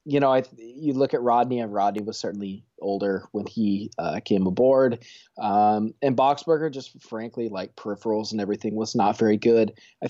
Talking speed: 185 wpm